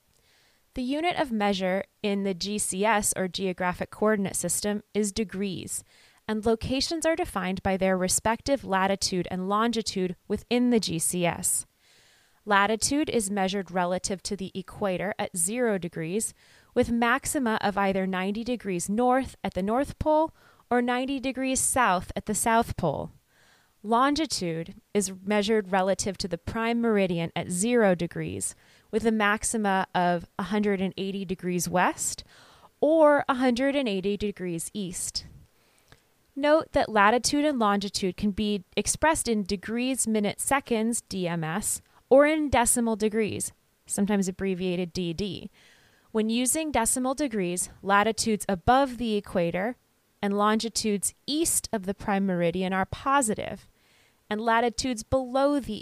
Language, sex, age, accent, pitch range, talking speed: English, female, 20-39, American, 190-240 Hz, 125 wpm